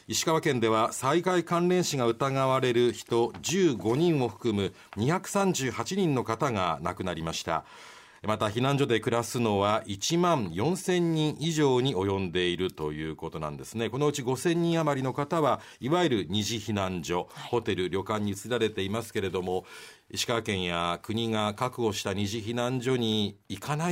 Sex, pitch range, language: male, 95-125 Hz, Japanese